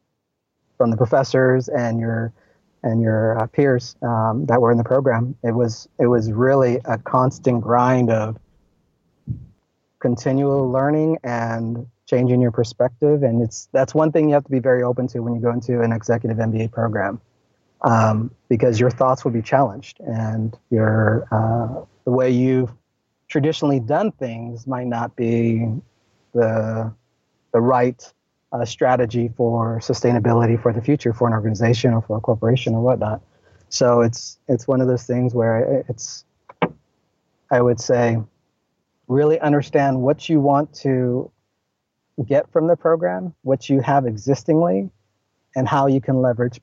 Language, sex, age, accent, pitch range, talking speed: English, male, 30-49, American, 115-130 Hz, 150 wpm